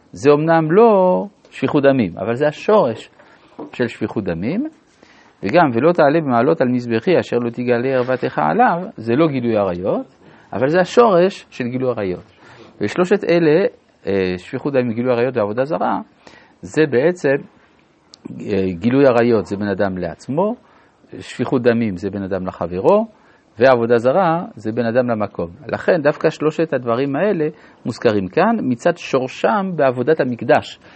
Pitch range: 115-170 Hz